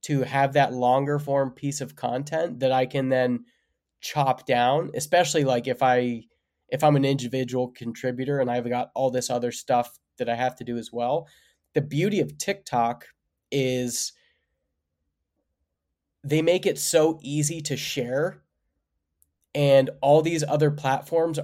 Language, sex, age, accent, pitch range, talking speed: English, male, 20-39, American, 120-150 Hz, 155 wpm